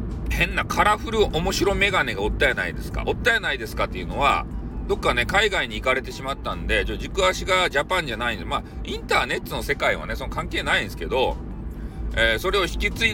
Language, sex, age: Japanese, male, 40-59